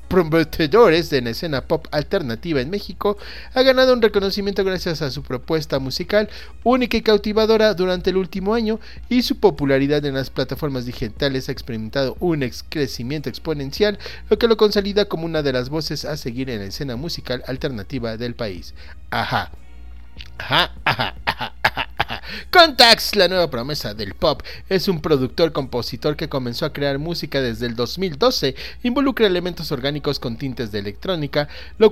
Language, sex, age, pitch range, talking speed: Spanish, male, 40-59, 130-190 Hz, 160 wpm